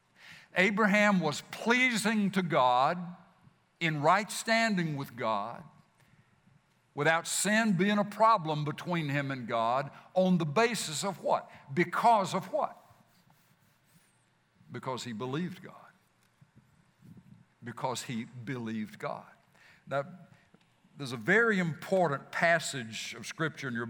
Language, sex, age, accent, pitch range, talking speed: English, male, 60-79, American, 135-185 Hz, 110 wpm